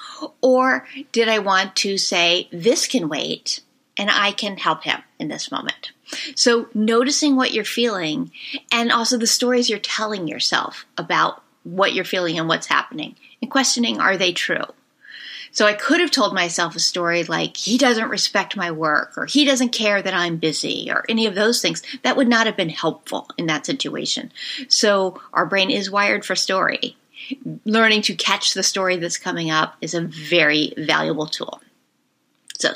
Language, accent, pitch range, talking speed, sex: English, American, 185-260 Hz, 180 wpm, female